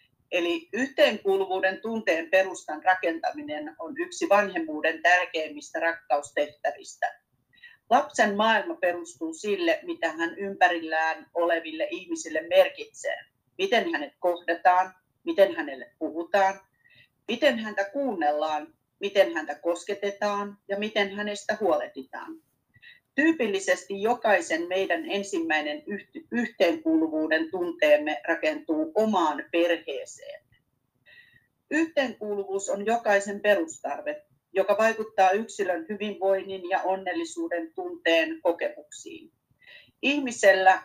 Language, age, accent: Finnish, 40-59, native